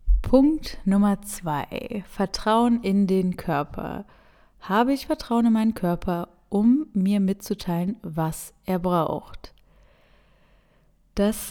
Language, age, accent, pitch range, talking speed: German, 20-39, German, 180-225 Hz, 105 wpm